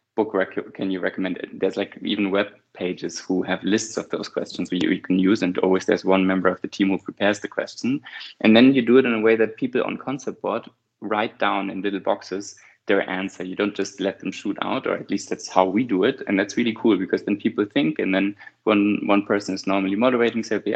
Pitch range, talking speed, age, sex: 95-105 Hz, 250 wpm, 20-39, male